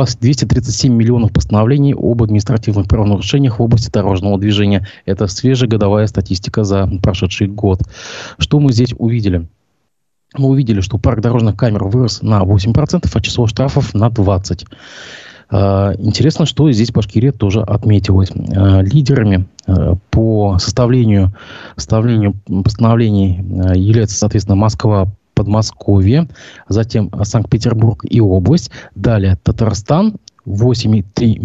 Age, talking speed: 20-39, 110 wpm